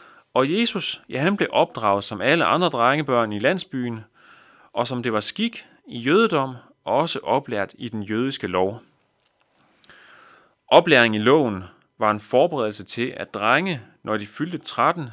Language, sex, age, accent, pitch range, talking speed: Danish, male, 30-49, native, 105-130 Hz, 150 wpm